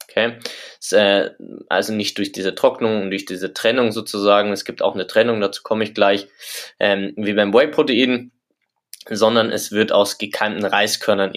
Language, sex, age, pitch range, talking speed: German, male, 20-39, 100-115 Hz, 155 wpm